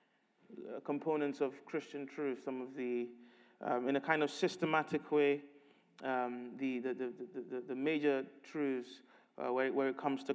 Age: 30-49